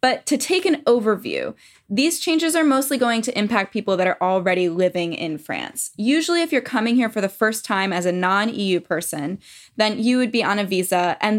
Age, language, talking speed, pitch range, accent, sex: 10-29, English, 210 wpm, 190-240 Hz, American, female